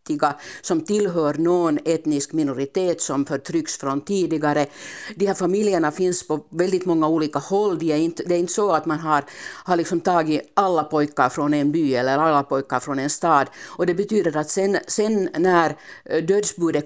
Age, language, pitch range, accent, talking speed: 50-69, Swedish, 145-180 Hz, Finnish, 180 wpm